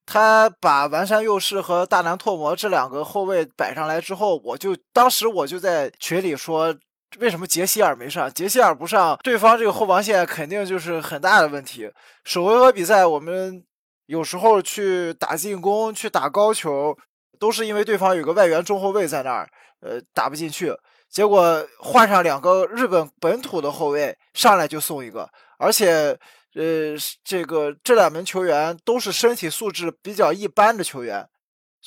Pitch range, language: 160-215 Hz, Chinese